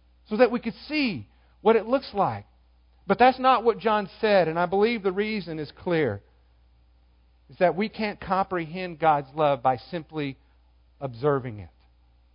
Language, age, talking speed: English, 50-69, 160 wpm